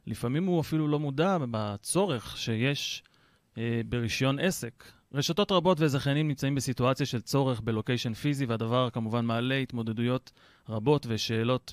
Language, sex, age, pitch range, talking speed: Hebrew, male, 30-49, 120-160 Hz, 130 wpm